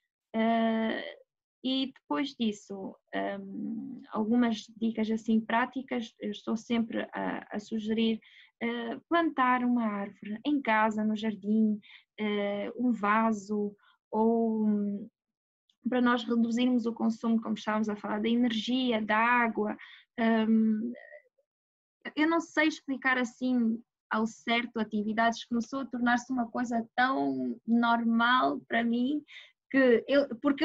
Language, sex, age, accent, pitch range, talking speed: Portuguese, female, 20-39, Brazilian, 225-275 Hz, 110 wpm